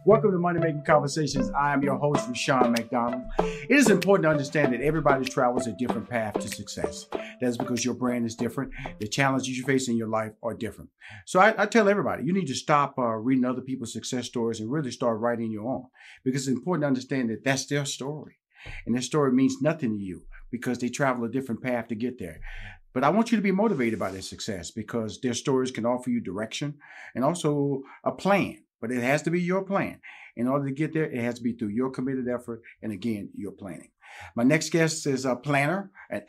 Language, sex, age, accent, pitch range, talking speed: English, male, 50-69, American, 120-145 Hz, 225 wpm